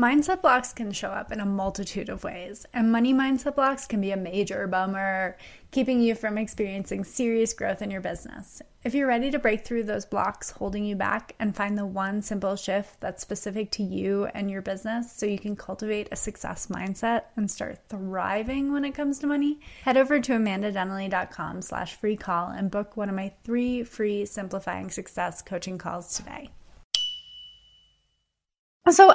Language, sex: English, female